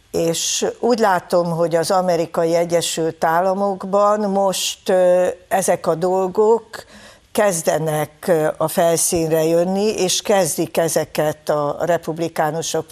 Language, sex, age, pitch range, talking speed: Hungarian, female, 60-79, 160-190 Hz, 100 wpm